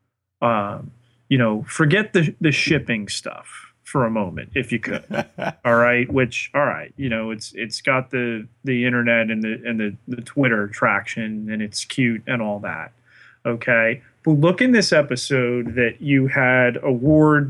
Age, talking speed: 30-49, 175 wpm